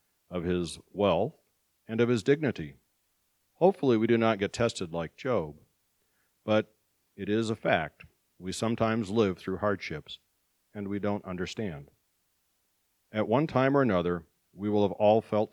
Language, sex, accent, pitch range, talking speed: English, male, American, 85-110 Hz, 150 wpm